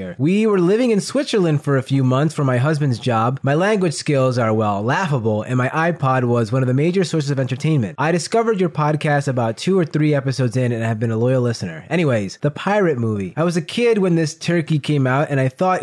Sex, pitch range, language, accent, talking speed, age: male, 130-165 Hz, English, American, 235 wpm, 20-39